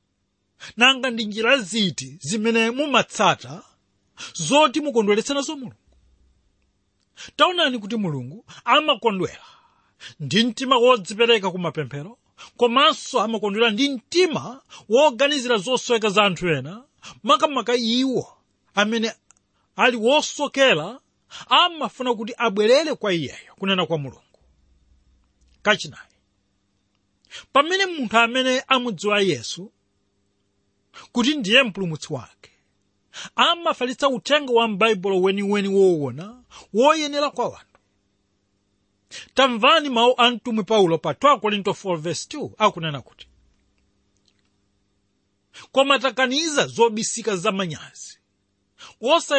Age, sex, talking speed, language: 40-59, male, 90 wpm, English